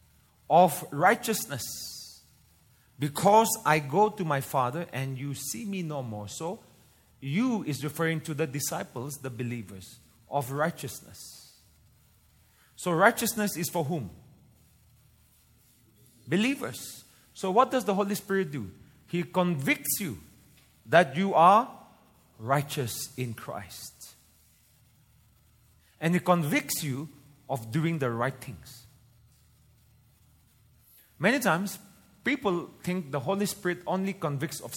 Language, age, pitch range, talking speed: English, 30-49, 120-185 Hz, 115 wpm